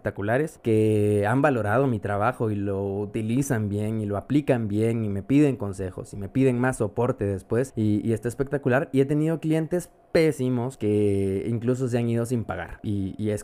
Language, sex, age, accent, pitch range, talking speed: Spanish, male, 20-39, Mexican, 120-165 Hz, 190 wpm